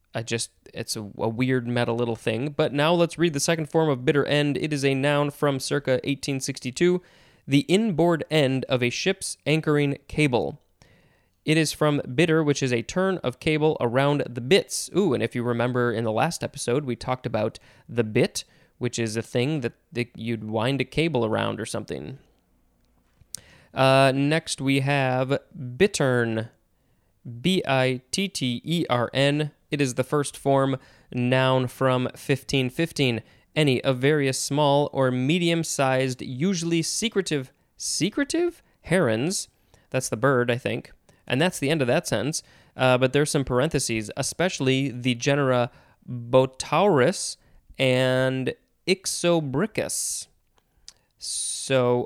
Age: 20-39